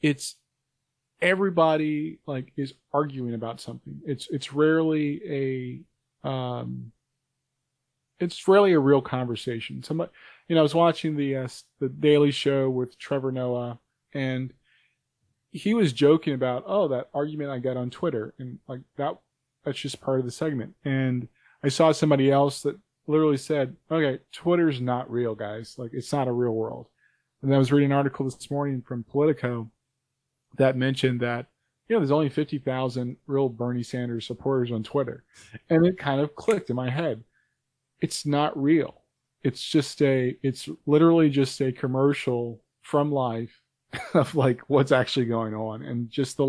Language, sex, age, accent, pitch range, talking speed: English, male, 20-39, American, 125-145 Hz, 160 wpm